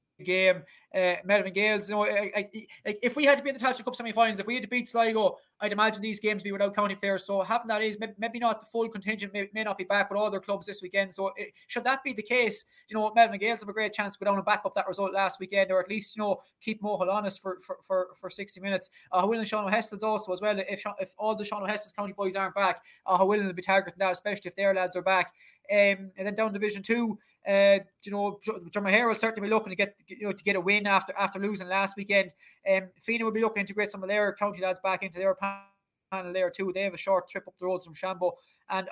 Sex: male